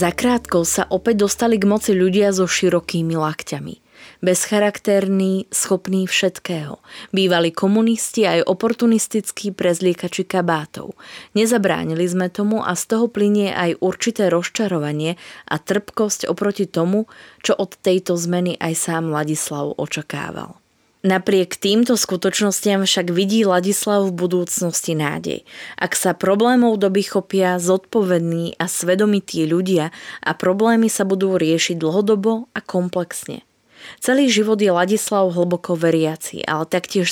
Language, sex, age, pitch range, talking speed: Slovak, female, 20-39, 175-205 Hz, 120 wpm